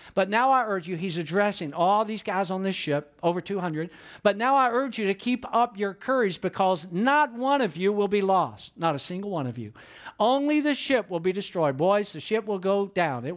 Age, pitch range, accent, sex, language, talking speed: 50-69, 175-245 Hz, American, male, English, 235 wpm